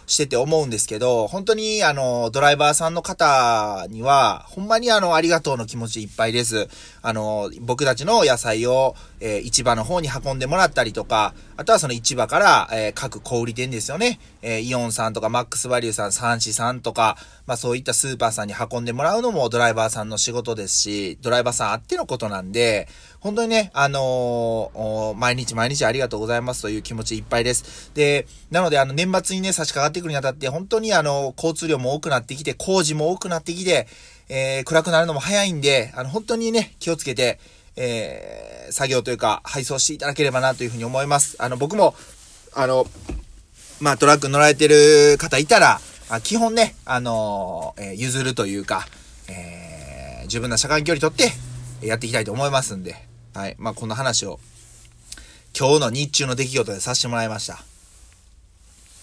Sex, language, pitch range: male, Japanese, 110-150 Hz